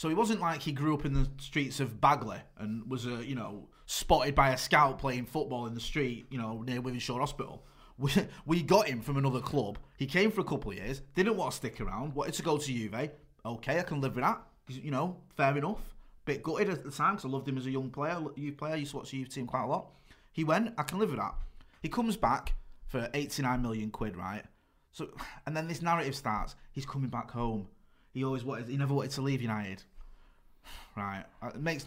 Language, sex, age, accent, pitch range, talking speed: English, male, 20-39, British, 110-145 Hz, 245 wpm